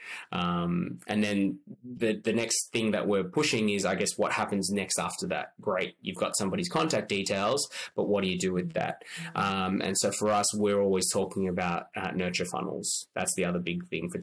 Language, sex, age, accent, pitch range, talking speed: English, male, 20-39, Australian, 95-110 Hz, 205 wpm